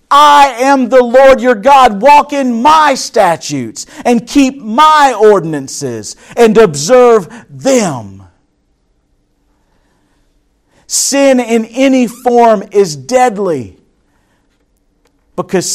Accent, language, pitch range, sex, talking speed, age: American, English, 175-265 Hz, male, 90 wpm, 50-69